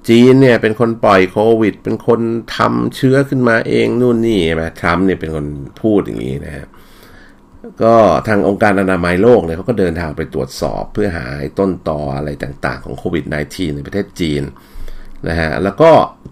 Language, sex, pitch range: Thai, male, 75-105 Hz